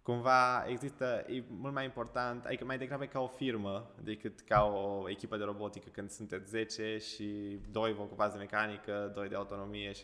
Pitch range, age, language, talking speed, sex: 105-125 Hz, 20-39, Romanian, 185 wpm, male